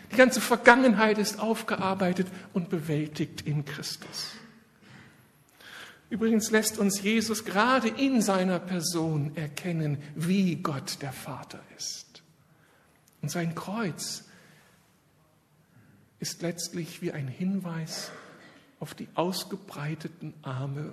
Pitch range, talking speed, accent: 155-200 Hz, 100 wpm, German